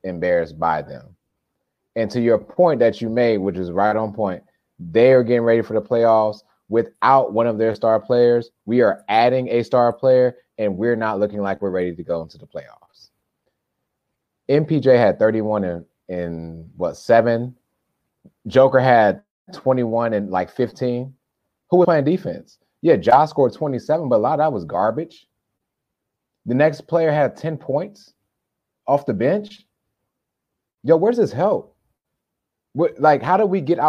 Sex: male